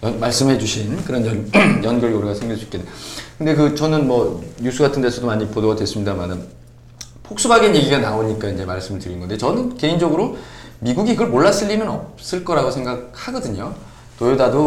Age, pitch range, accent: 20-39, 110-145 Hz, native